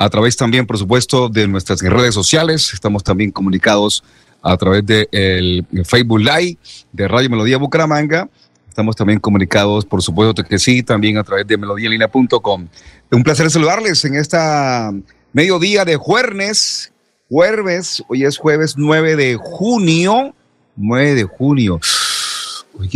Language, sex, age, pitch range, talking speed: Spanish, male, 40-59, 105-135 Hz, 140 wpm